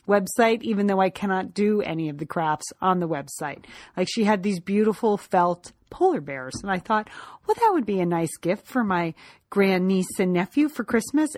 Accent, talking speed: American, 200 wpm